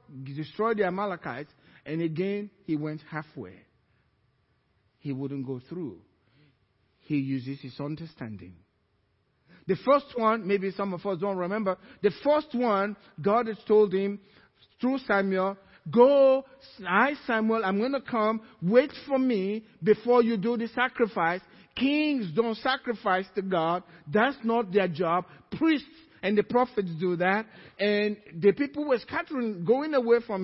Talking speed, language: 140 wpm, English